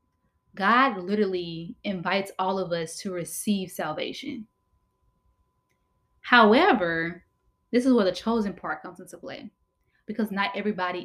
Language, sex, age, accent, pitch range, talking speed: English, female, 20-39, American, 190-255 Hz, 120 wpm